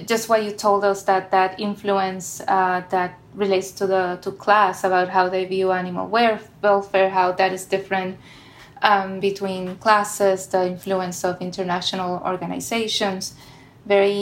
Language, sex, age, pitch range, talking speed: English, female, 20-39, 185-205 Hz, 135 wpm